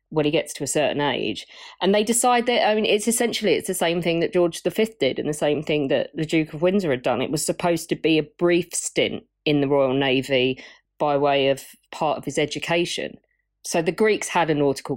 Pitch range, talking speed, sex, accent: 130-155 Hz, 235 wpm, female, British